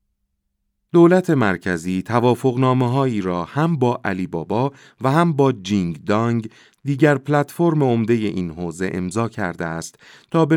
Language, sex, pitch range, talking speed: Persian, male, 90-130 Hz, 140 wpm